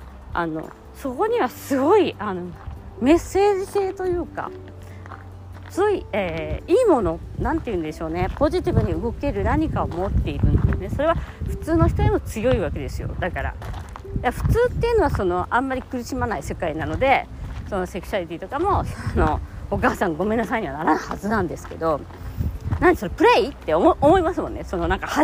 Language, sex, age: Japanese, female, 40-59